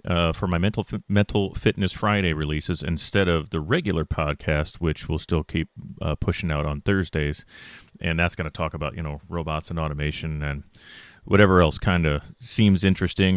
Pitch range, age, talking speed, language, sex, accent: 85-110 Hz, 40-59, 190 wpm, English, male, American